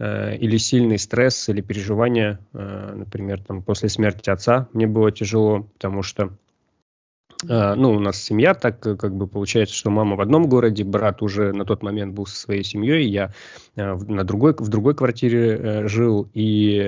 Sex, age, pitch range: male, 20-39, 100-115 Hz